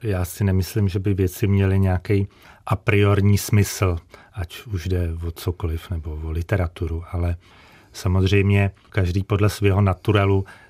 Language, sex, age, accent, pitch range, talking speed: Czech, male, 40-59, native, 90-100 Hz, 135 wpm